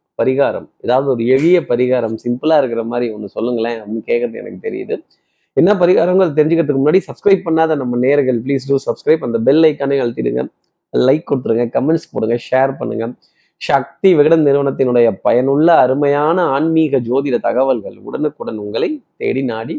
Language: Tamil